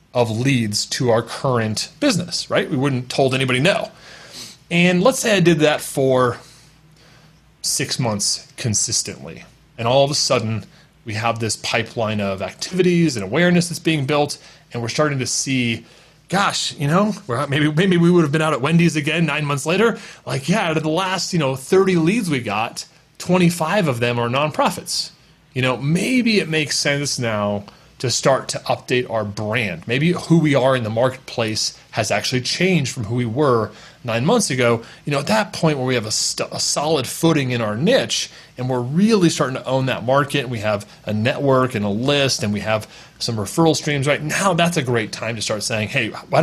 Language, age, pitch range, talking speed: English, 30-49, 115-165 Hz, 200 wpm